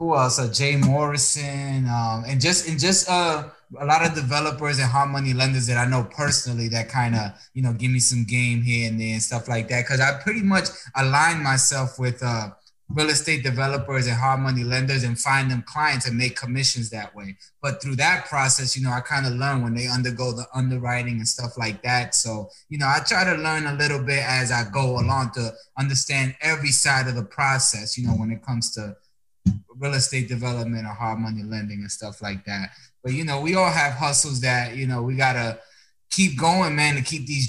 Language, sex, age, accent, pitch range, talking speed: English, male, 20-39, American, 120-140 Hz, 220 wpm